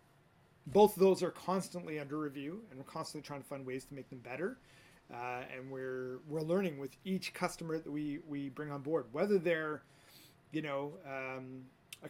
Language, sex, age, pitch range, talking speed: English, male, 30-49, 135-165 Hz, 190 wpm